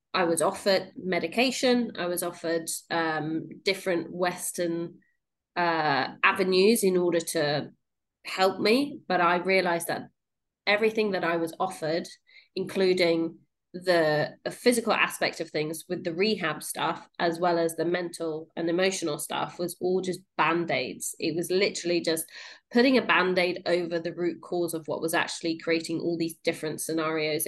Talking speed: 150 wpm